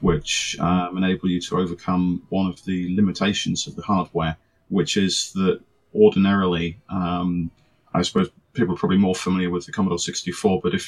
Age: 30-49